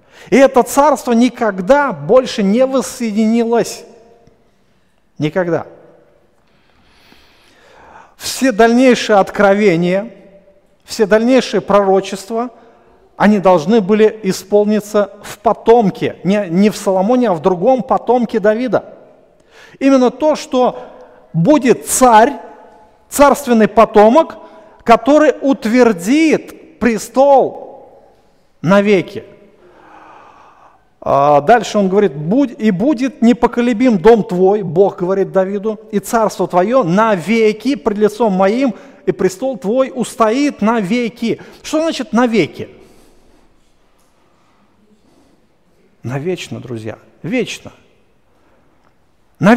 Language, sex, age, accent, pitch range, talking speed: Russian, male, 50-69, native, 200-260 Hz, 85 wpm